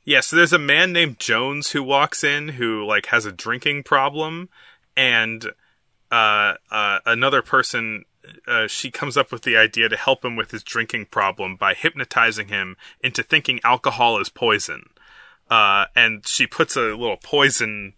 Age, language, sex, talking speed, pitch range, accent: 20-39, English, male, 170 wpm, 110-155 Hz, American